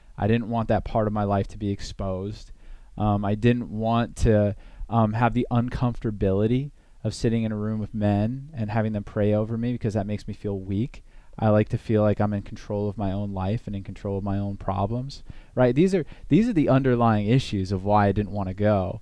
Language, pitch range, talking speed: English, 105-120 Hz, 230 wpm